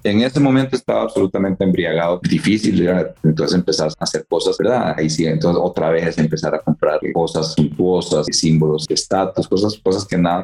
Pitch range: 85-100 Hz